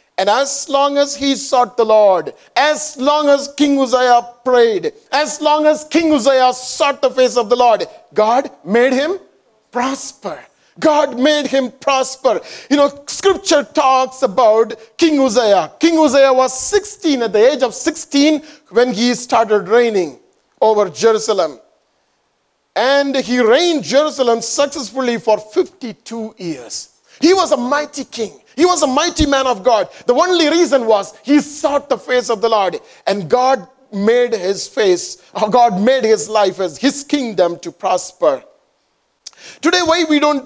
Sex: male